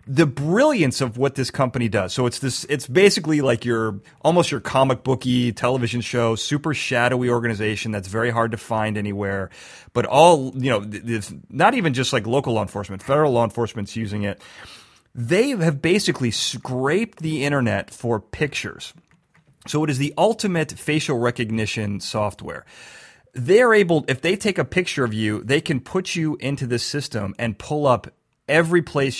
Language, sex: English, male